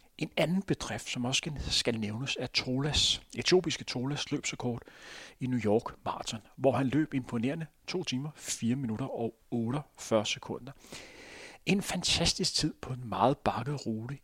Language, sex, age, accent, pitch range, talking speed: Danish, male, 40-59, native, 115-145 Hz, 150 wpm